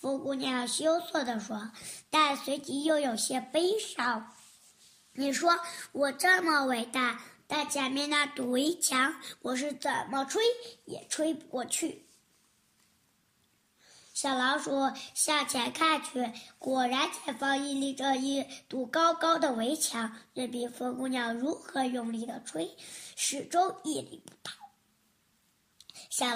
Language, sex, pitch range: Chinese, male, 255-330 Hz